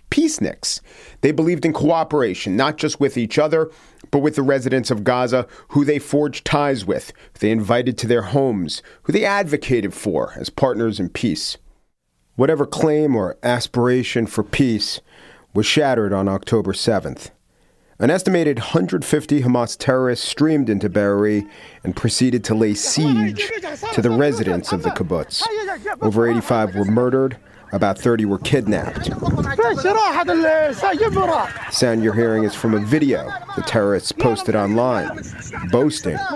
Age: 40-59